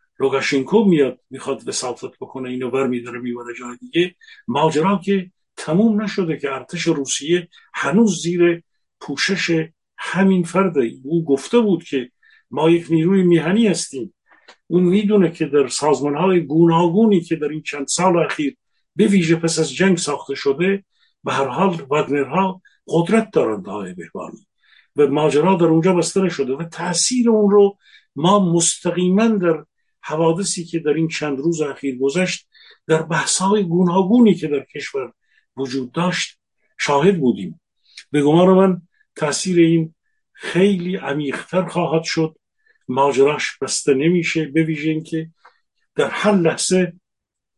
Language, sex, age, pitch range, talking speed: Persian, male, 50-69, 150-190 Hz, 135 wpm